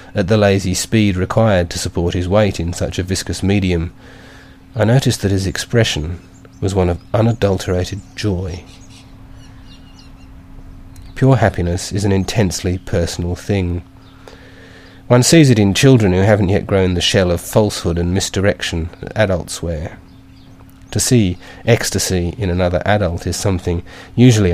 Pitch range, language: 90-110 Hz, English